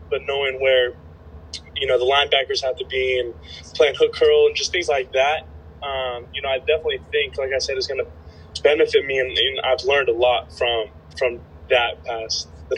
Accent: American